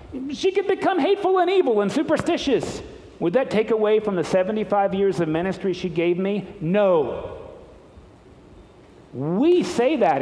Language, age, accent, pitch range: English, 50-69, American, 180-280 Hz